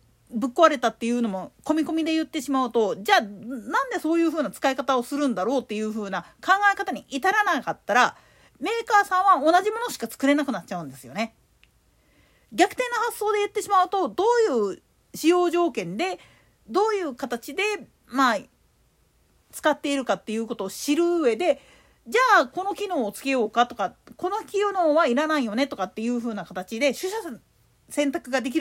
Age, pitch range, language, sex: 40-59, 230-365 Hz, Japanese, female